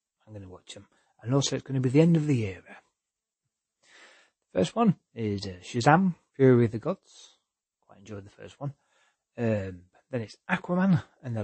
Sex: male